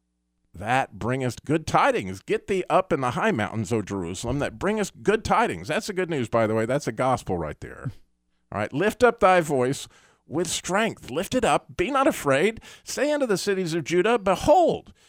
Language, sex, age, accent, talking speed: English, male, 50-69, American, 200 wpm